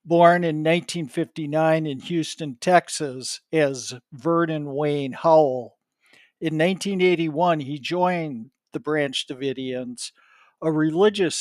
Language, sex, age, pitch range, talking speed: English, male, 60-79, 145-175 Hz, 100 wpm